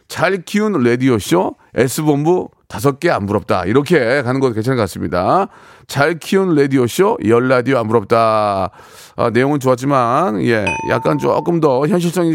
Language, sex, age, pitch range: Korean, male, 40-59, 125-185 Hz